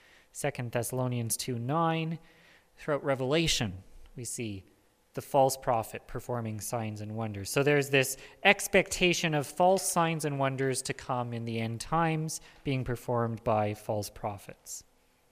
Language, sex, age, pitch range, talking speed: English, male, 30-49, 125-165 Hz, 140 wpm